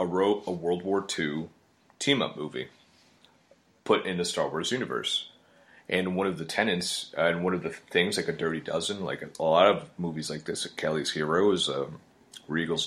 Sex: male